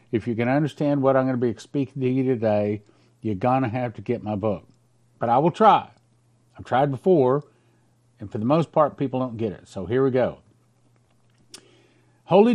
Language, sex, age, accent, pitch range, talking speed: English, male, 50-69, American, 120-145 Hz, 200 wpm